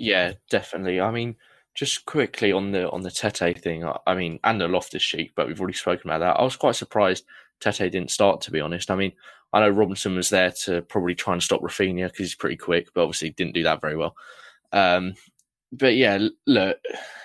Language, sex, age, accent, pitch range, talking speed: English, male, 20-39, British, 90-105 Hz, 225 wpm